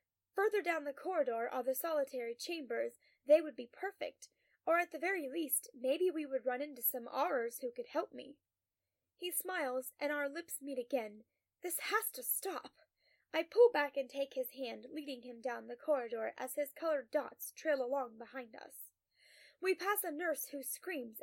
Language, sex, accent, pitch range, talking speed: English, female, American, 255-350 Hz, 185 wpm